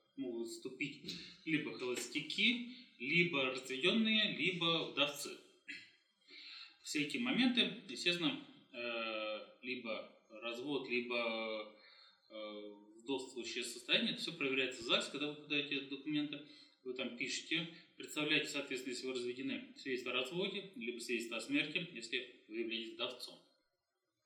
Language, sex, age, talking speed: Russian, male, 20-39, 110 wpm